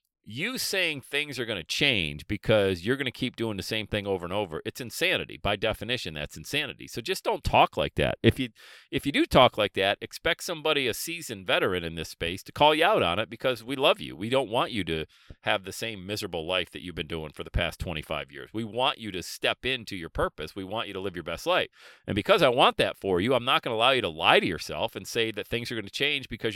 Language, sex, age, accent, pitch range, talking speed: English, male, 40-59, American, 95-125 Hz, 265 wpm